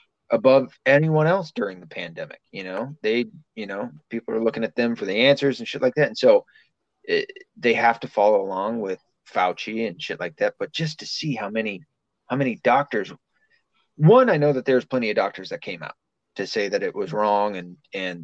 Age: 30-49